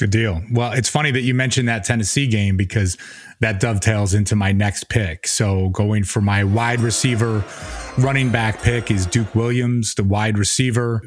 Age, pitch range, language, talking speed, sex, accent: 30-49, 100-120 Hz, English, 180 wpm, male, American